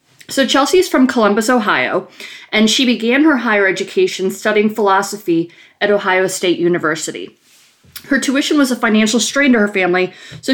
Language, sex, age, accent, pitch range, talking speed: English, female, 30-49, American, 180-235 Hz, 155 wpm